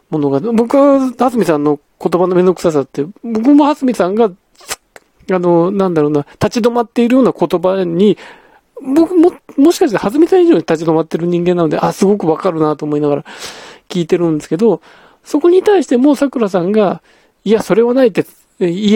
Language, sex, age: Japanese, male, 40-59